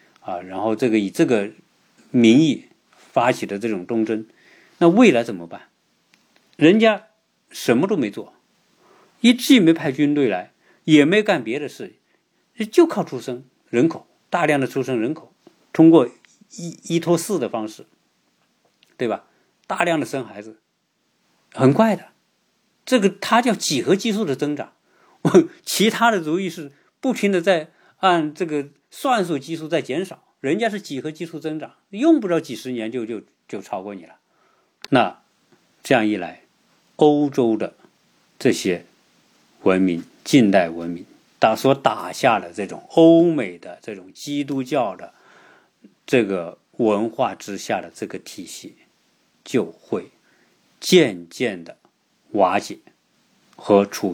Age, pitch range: 50-69, 125-195 Hz